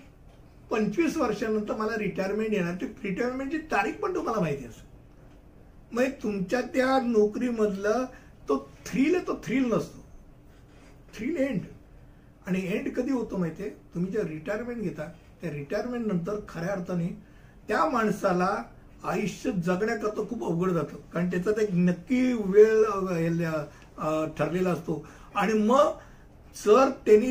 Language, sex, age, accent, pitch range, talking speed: Hindi, male, 60-79, native, 175-230 Hz, 75 wpm